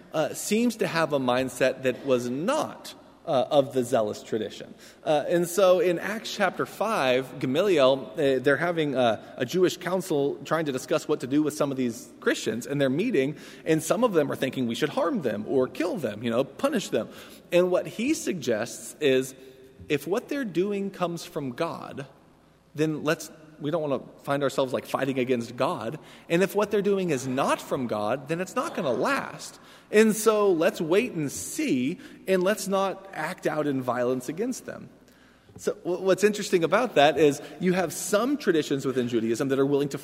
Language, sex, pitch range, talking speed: English, male, 135-190 Hz, 195 wpm